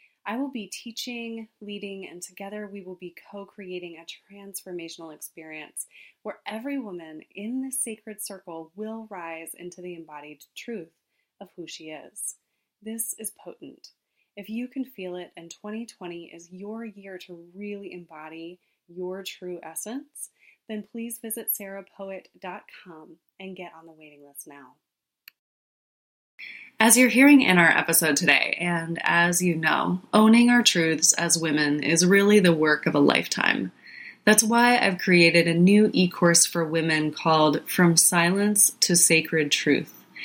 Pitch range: 165-205 Hz